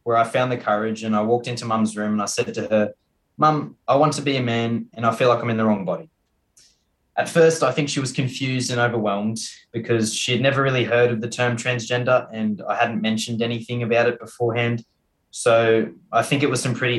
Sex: male